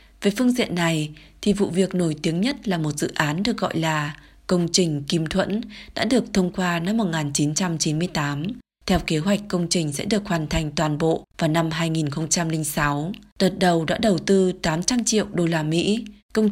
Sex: female